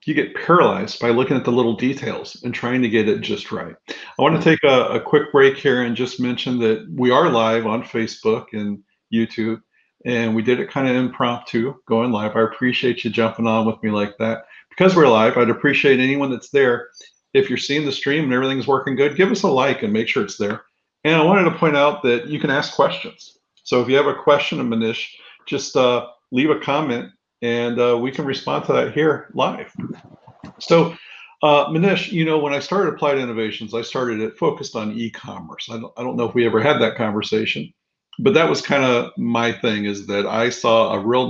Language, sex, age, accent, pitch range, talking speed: English, male, 50-69, American, 110-135 Hz, 220 wpm